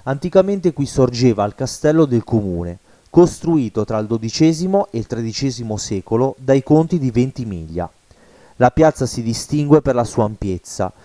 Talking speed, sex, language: 145 wpm, male, Italian